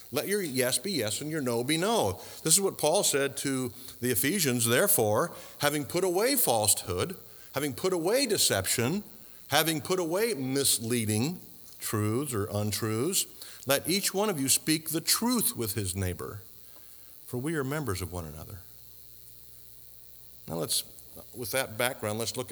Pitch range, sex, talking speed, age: 100-125 Hz, male, 155 wpm, 50-69